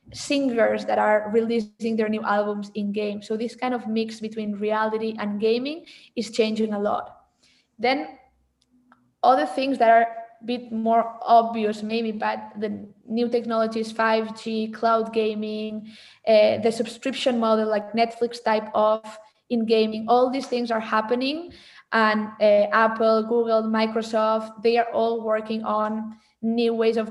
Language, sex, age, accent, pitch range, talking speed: English, female, 20-39, Spanish, 215-235 Hz, 150 wpm